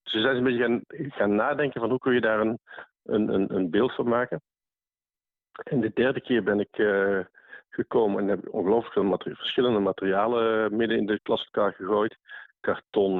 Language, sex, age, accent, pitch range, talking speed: Dutch, male, 50-69, Dutch, 95-110 Hz, 180 wpm